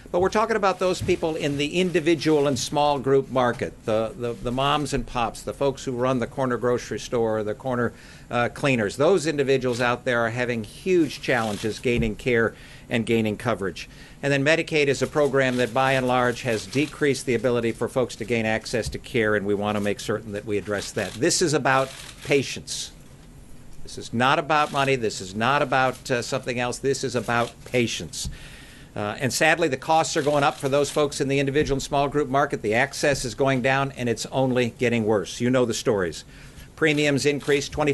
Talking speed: 205 wpm